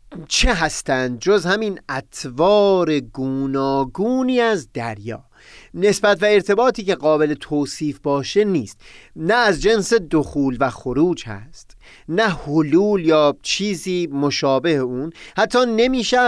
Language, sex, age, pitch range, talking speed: Persian, male, 30-49, 135-205 Hz, 115 wpm